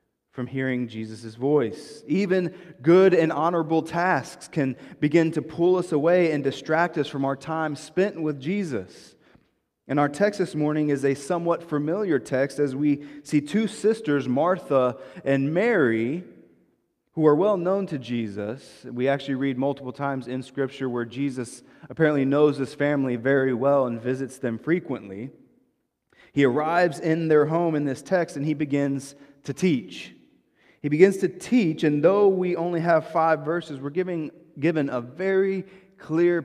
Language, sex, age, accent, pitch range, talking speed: English, male, 30-49, American, 130-170 Hz, 160 wpm